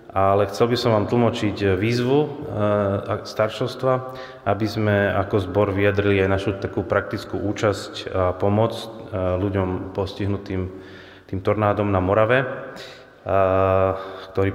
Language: Slovak